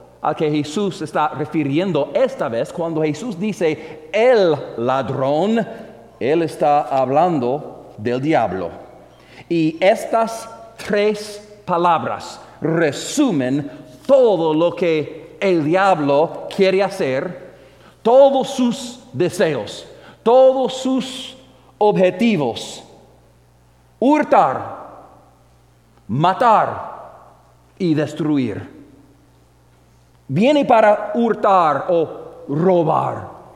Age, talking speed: 50-69, 80 wpm